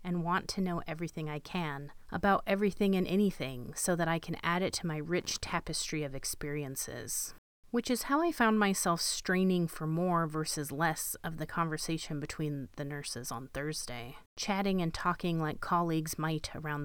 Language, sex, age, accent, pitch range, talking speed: English, female, 30-49, American, 155-190 Hz, 175 wpm